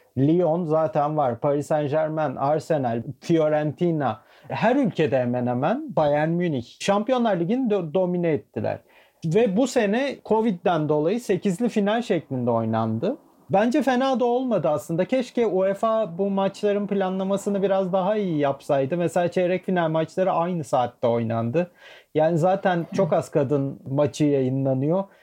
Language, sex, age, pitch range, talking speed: Turkish, male, 40-59, 150-205 Hz, 130 wpm